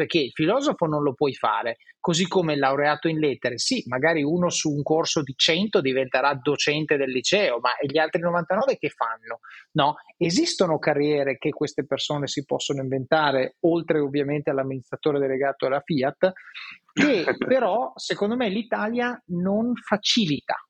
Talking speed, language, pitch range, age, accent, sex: 155 wpm, Italian, 145-180 Hz, 30-49, native, male